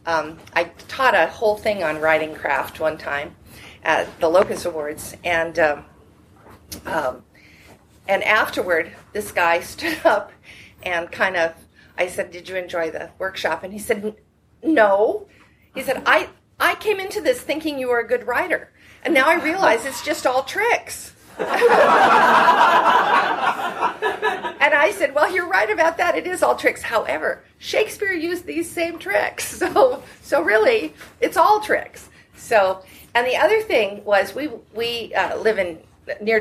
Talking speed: 155 wpm